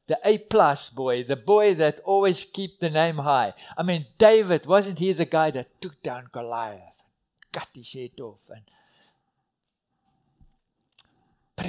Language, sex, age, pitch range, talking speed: English, male, 60-79, 155-220 Hz, 145 wpm